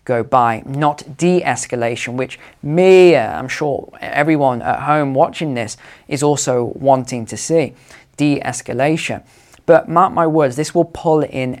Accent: British